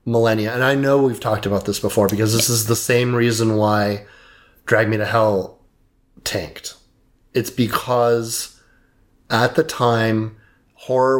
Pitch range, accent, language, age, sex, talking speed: 110-125 Hz, American, English, 30-49, male, 145 wpm